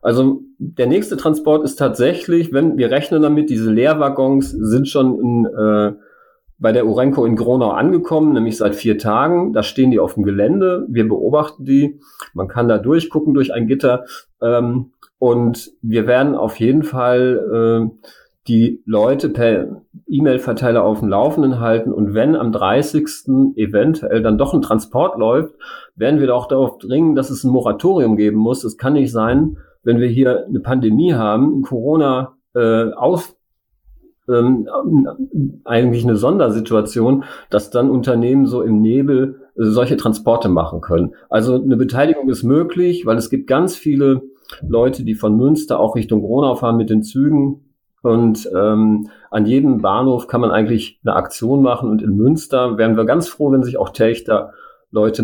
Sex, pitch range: male, 110-135 Hz